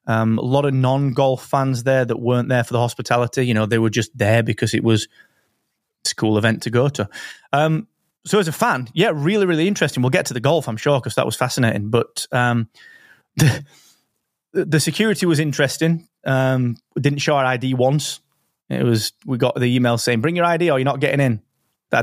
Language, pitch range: English, 115-145 Hz